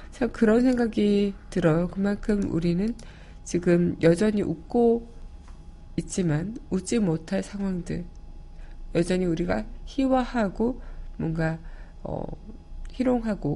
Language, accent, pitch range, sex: Korean, native, 165-210 Hz, female